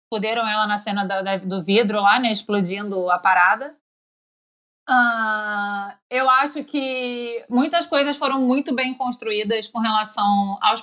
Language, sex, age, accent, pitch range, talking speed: Portuguese, female, 20-39, Brazilian, 210-260 Hz, 135 wpm